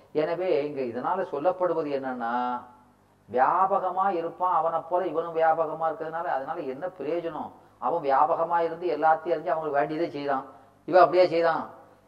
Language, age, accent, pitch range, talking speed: Tamil, 30-49, native, 145-180 Hz, 125 wpm